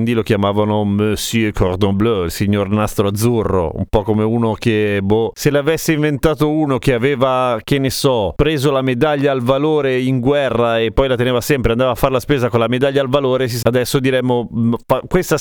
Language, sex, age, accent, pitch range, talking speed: Italian, male, 30-49, native, 115-155 Hz, 190 wpm